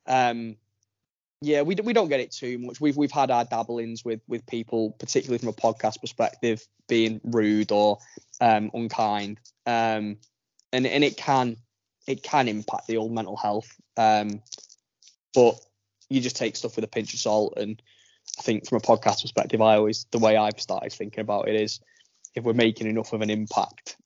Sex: male